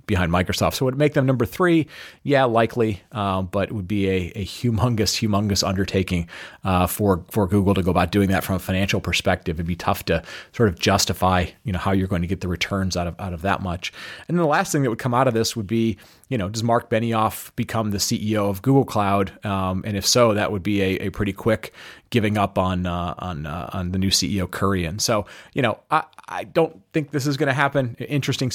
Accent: American